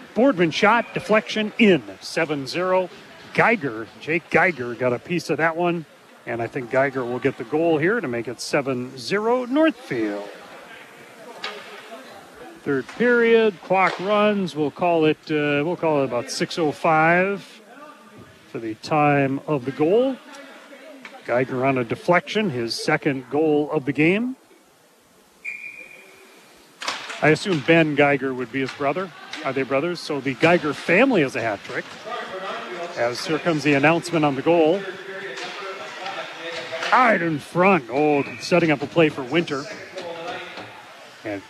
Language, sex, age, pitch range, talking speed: English, male, 40-59, 140-180 Hz, 135 wpm